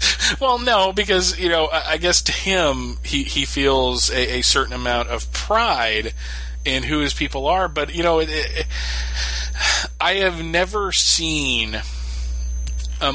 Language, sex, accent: English, male, American